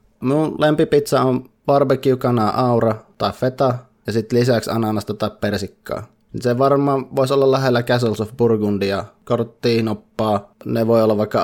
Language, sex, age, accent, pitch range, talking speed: Finnish, male, 20-39, native, 105-125 Hz, 140 wpm